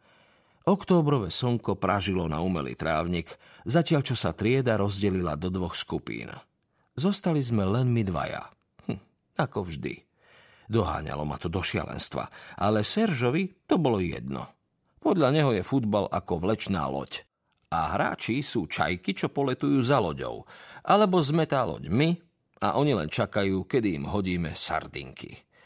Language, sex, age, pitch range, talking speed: Slovak, male, 40-59, 90-135 Hz, 140 wpm